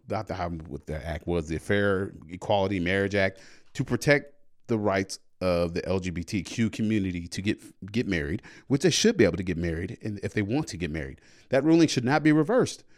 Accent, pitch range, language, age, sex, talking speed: American, 100-150 Hz, English, 30-49, male, 210 wpm